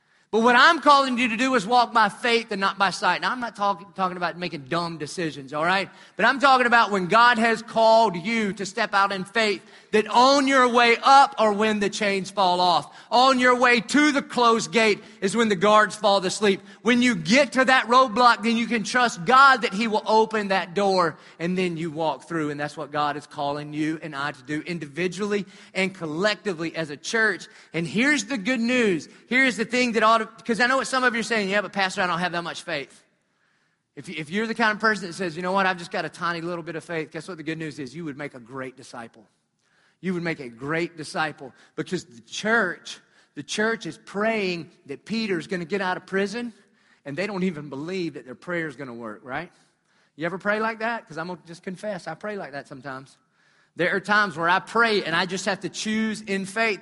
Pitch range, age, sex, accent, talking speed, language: 170-225 Hz, 30-49, male, American, 240 wpm, English